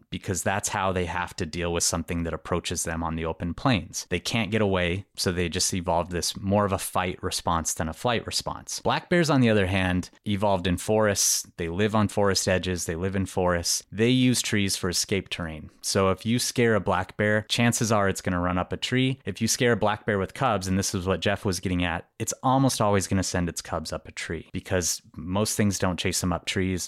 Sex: male